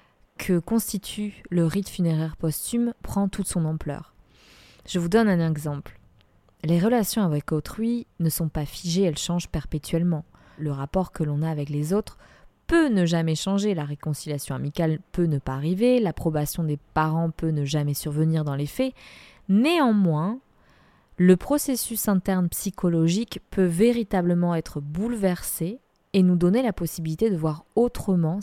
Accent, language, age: French, French, 20-39